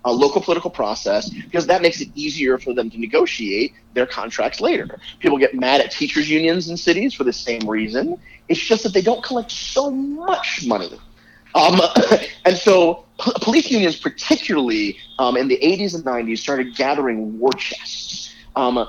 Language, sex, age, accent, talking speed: English, male, 30-49, American, 175 wpm